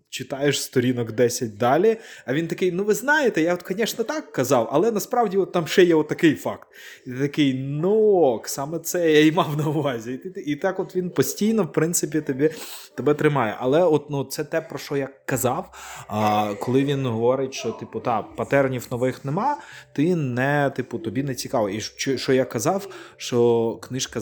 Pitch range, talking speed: 110-145 Hz, 190 wpm